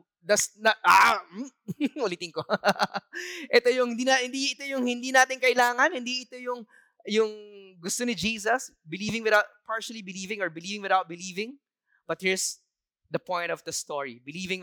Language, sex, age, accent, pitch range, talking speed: English, male, 20-39, Filipino, 180-245 Hz, 155 wpm